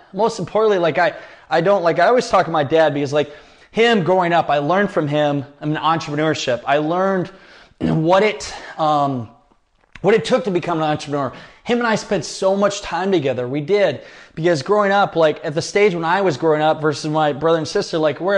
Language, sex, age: English, male, 20-39